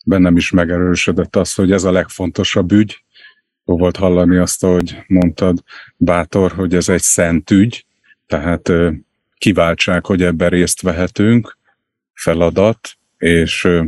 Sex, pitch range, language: male, 85-95 Hz, Hungarian